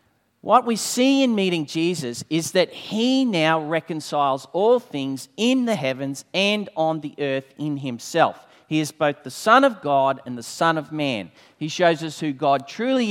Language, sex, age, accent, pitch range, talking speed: English, male, 40-59, Australian, 145-205 Hz, 185 wpm